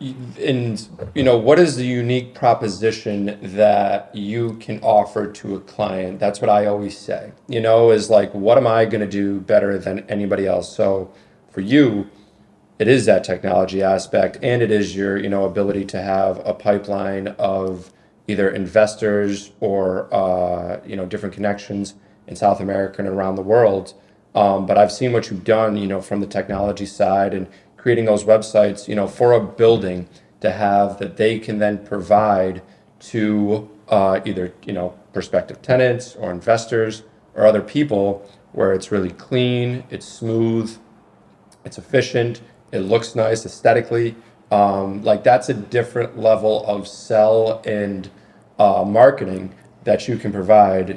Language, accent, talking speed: English, American, 160 wpm